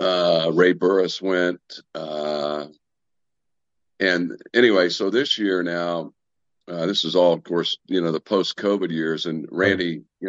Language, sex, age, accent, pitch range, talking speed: English, male, 50-69, American, 80-95 Hz, 150 wpm